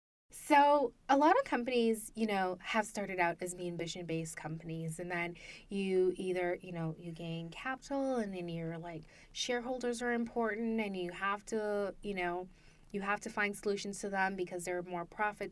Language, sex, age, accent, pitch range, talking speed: English, female, 20-39, American, 175-210 Hz, 185 wpm